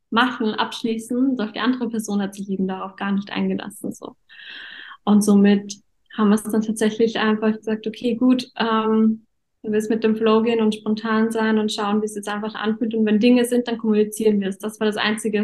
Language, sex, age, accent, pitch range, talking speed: German, female, 10-29, German, 200-225 Hz, 210 wpm